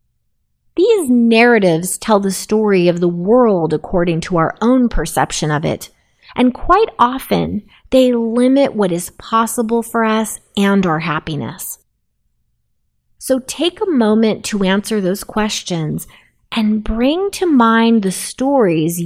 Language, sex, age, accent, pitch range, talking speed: English, female, 30-49, American, 180-240 Hz, 130 wpm